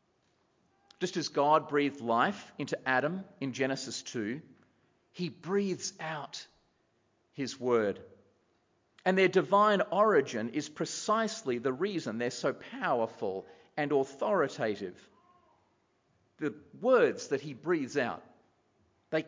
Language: English